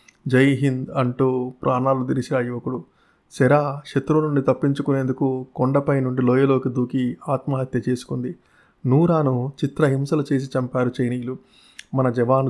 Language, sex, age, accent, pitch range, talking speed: Telugu, male, 30-49, native, 125-140 Hz, 105 wpm